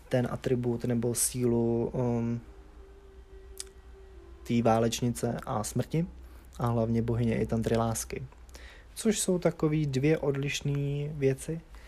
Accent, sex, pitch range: native, male, 115-135 Hz